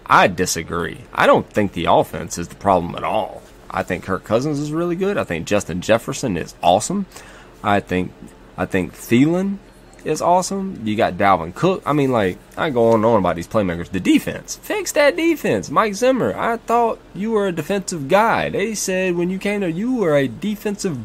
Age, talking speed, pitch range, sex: 20-39, 200 wpm, 90-130 Hz, male